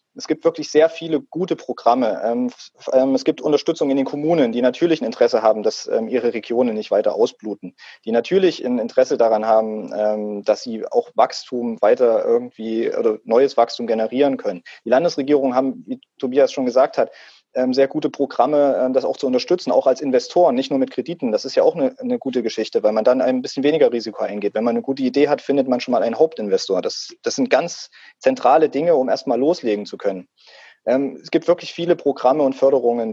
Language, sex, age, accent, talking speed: German, male, 30-49, German, 195 wpm